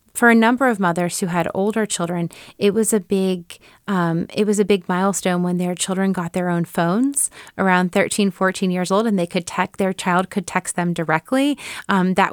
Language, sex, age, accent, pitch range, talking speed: English, female, 30-49, American, 180-215 Hz, 210 wpm